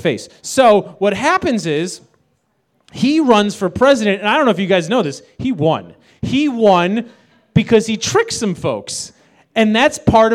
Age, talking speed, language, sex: 30-49, 175 wpm, English, male